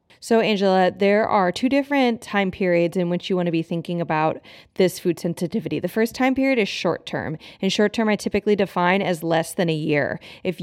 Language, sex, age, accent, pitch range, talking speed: English, female, 20-39, American, 170-210 Hz, 215 wpm